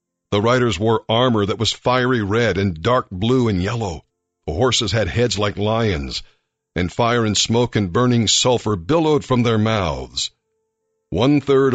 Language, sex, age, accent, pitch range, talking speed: English, male, 50-69, American, 100-125 Hz, 160 wpm